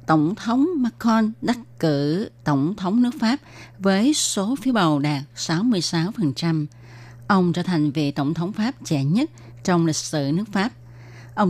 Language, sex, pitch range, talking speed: Vietnamese, female, 145-200 Hz, 155 wpm